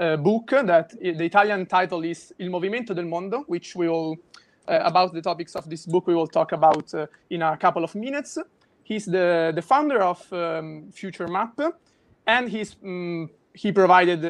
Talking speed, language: 190 wpm, Italian